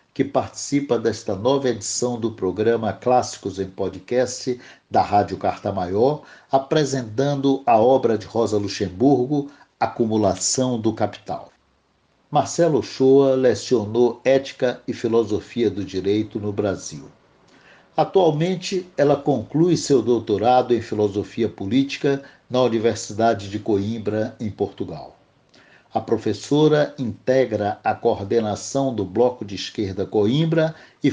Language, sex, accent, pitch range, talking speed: Portuguese, male, Brazilian, 105-135 Hz, 110 wpm